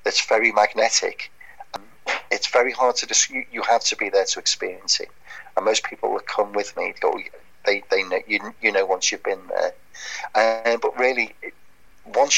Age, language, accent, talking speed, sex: 40-59, English, British, 190 wpm, male